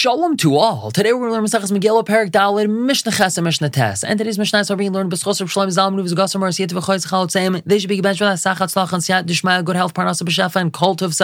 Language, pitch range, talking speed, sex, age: English, 130-185 Hz, 150 wpm, male, 20-39